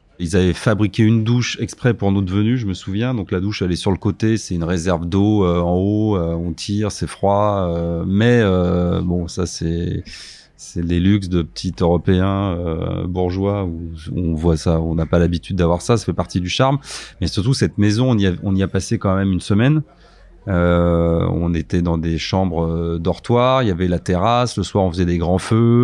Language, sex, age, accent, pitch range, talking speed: French, male, 30-49, French, 90-105 Hz, 220 wpm